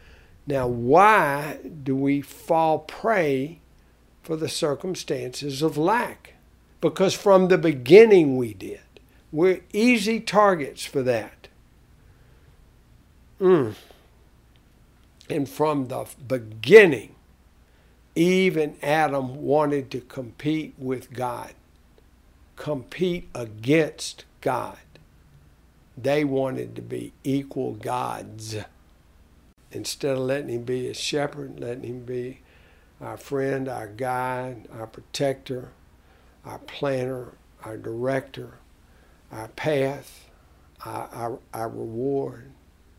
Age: 60-79